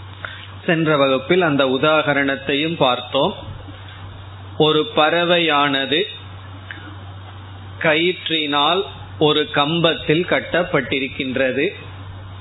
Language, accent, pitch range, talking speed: Tamil, native, 100-160 Hz, 55 wpm